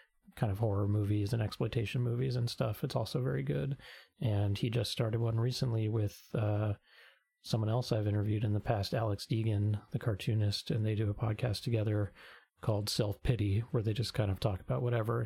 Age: 30-49